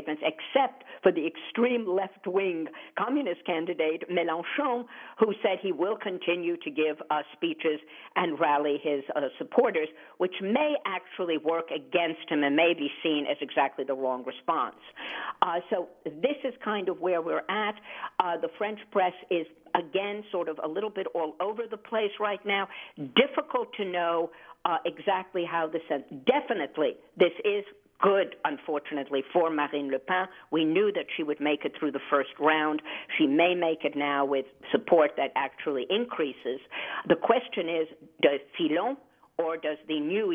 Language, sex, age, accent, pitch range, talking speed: English, female, 50-69, American, 155-200 Hz, 165 wpm